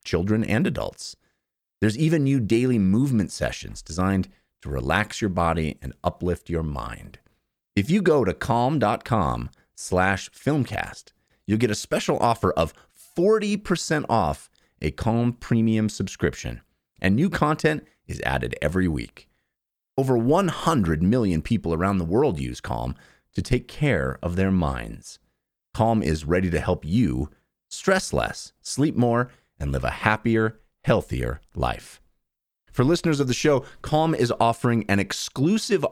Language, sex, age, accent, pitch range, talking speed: English, male, 30-49, American, 80-130 Hz, 140 wpm